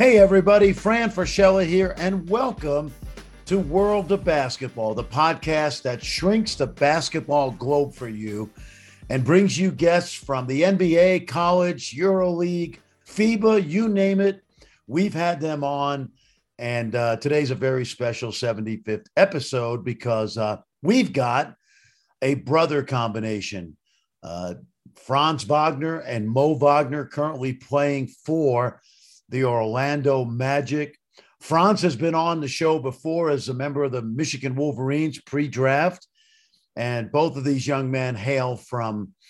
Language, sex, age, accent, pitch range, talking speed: English, male, 50-69, American, 120-165 Hz, 135 wpm